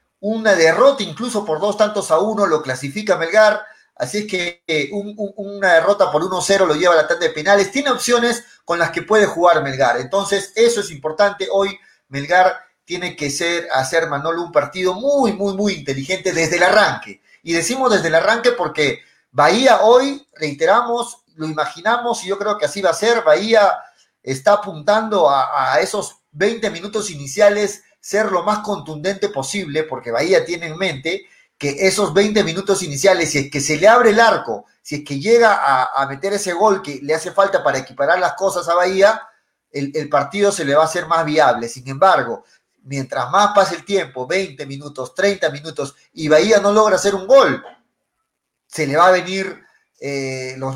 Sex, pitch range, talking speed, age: male, 155-205 Hz, 190 wpm, 40-59